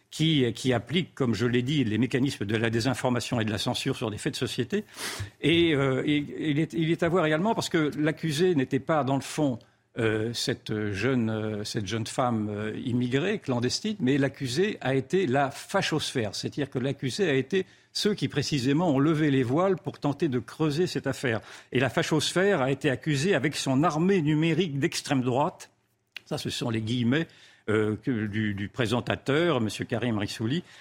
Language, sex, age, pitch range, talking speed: French, male, 50-69, 125-155 Hz, 185 wpm